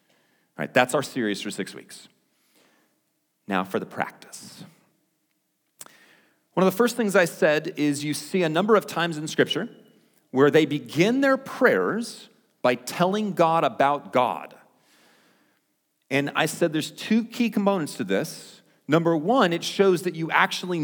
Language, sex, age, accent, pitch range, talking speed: English, male, 40-59, American, 135-195 Hz, 155 wpm